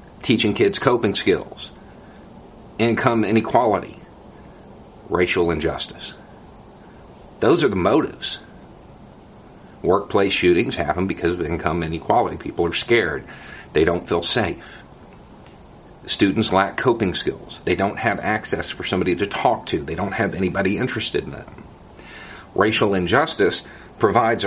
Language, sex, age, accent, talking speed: English, male, 50-69, American, 120 wpm